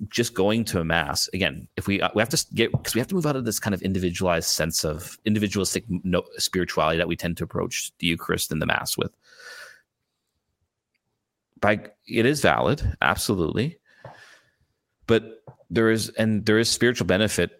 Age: 30-49